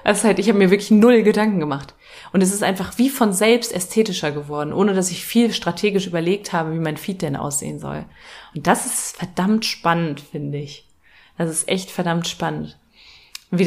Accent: German